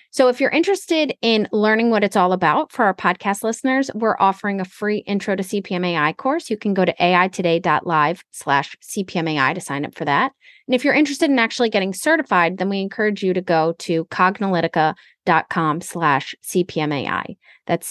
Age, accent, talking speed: 30-49, American, 170 wpm